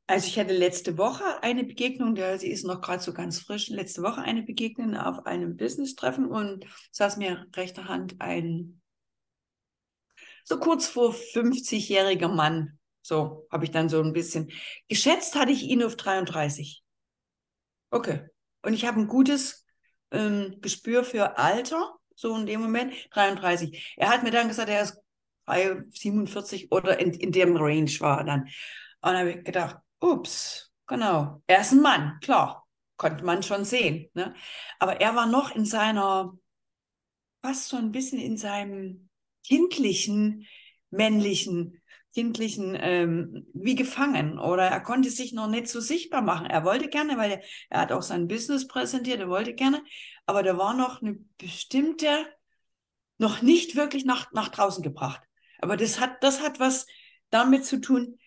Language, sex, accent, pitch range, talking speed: German, female, German, 180-255 Hz, 160 wpm